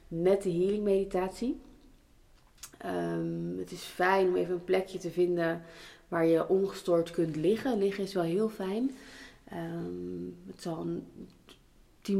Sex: female